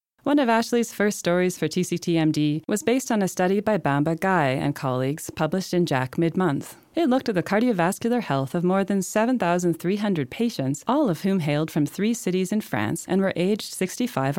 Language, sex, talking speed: English, female, 190 wpm